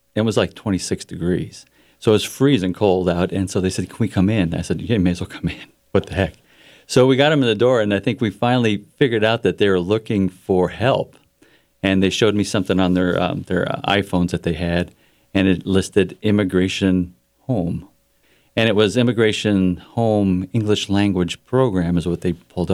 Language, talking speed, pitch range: English, 210 wpm, 90-115 Hz